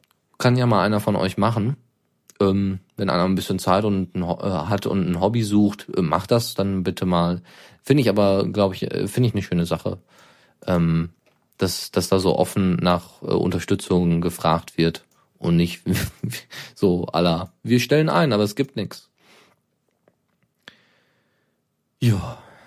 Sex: male